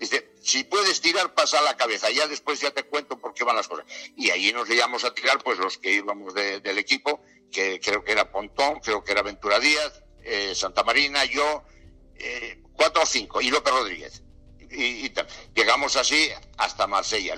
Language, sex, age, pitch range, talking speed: Spanish, male, 60-79, 115-155 Hz, 195 wpm